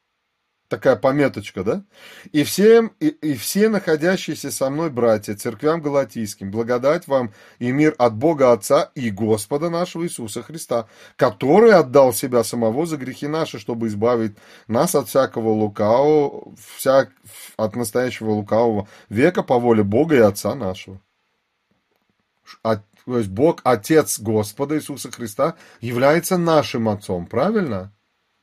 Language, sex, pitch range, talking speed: Russian, male, 115-150 Hz, 130 wpm